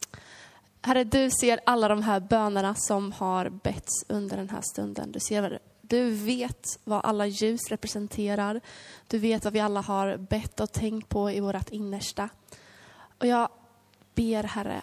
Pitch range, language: 200-225 Hz, Swedish